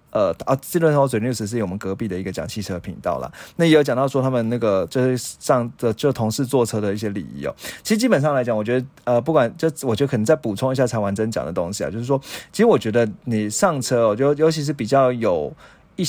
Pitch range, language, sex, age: 105-140 Hz, Chinese, male, 20-39